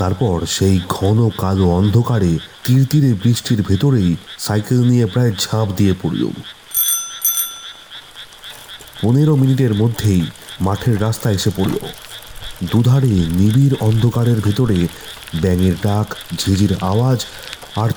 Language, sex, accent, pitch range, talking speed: Bengali, male, native, 95-120 Hz, 105 wpm